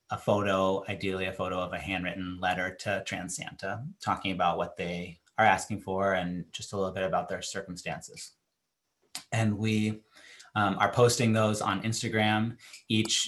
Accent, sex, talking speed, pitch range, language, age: American, male, 165 wpm, 95-110 Hz, English, 30-49